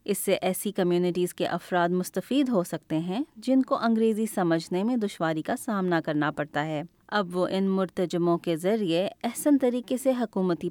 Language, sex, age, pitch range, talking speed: Urdu, female, 20-39, 165-225 Hz, 175 wpm